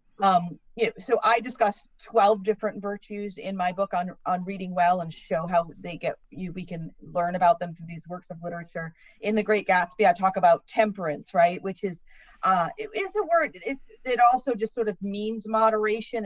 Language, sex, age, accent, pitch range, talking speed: English, female, 40-59, American, 180-220 Hz, 205 wpm